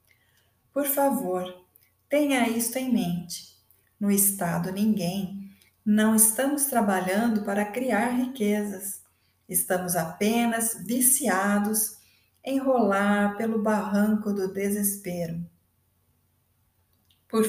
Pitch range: 195-235 Hz